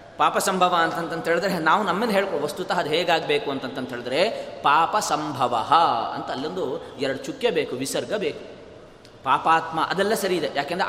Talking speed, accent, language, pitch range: 125 wpm, native, Kannada, 150-195 Hz